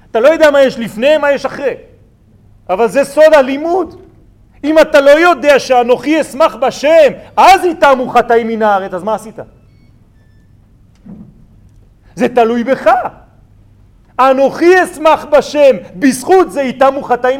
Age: 40-59